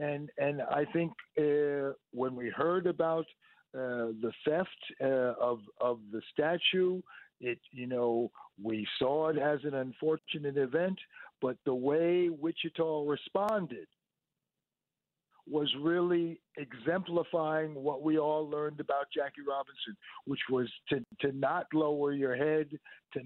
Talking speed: 130 wpm